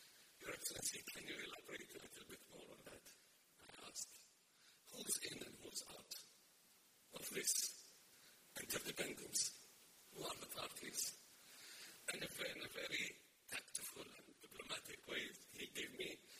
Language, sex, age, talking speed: English, male, 60-79, 130 wpm